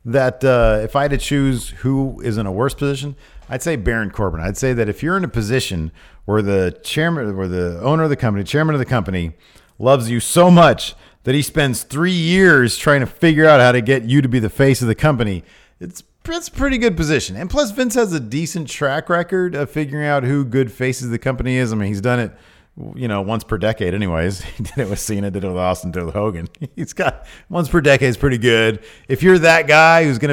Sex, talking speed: male, 245 wpm